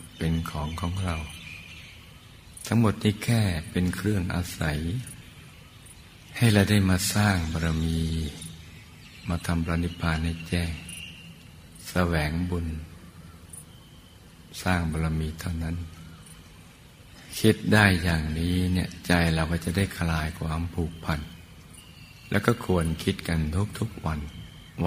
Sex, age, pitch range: male, 60-79, 80-90 Hz